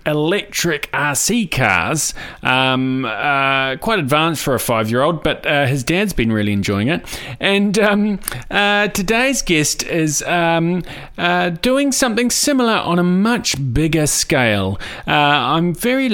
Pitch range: 125-175 Hz